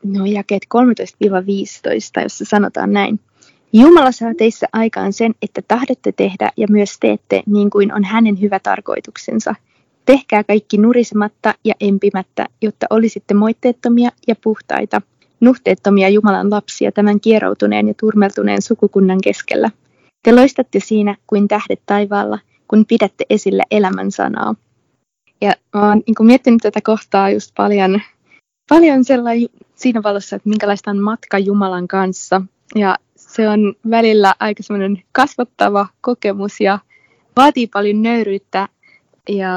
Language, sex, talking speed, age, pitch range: Finnish, female, 130 wpm, 20-39, 195-225 Hz